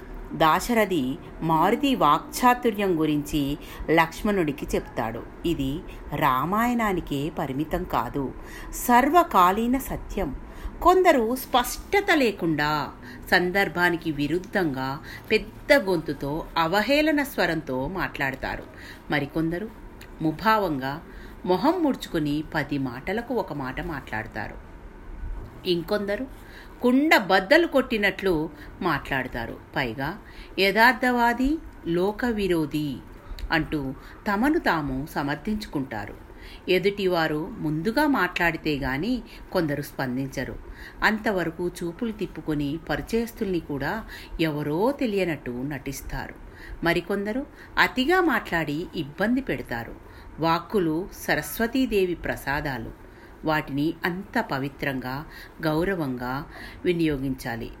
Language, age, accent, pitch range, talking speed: Telugu, 50-69, native, 140-215 Hz, 75 wpm